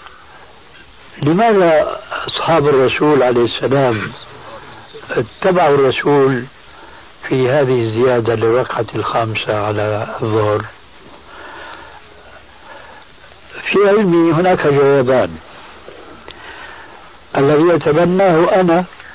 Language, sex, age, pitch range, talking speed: Arabic, male, 60-79, 135-185 Hz, 65 wpm